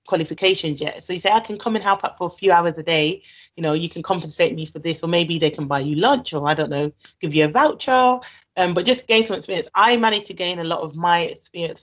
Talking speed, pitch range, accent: 280 wpm, 160-210 Hz, British